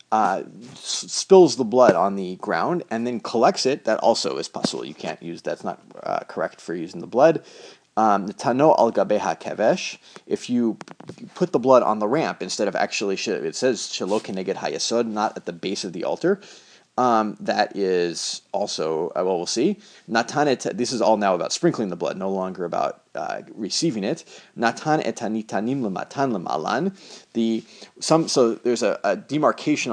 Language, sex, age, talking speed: English, male, 30-49, 165 wpm